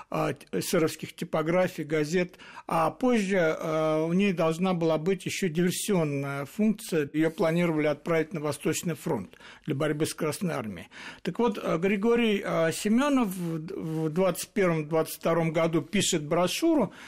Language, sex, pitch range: Russian, male, 165-195 Hz